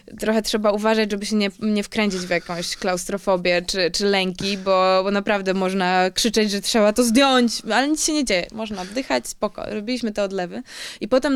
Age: 20-39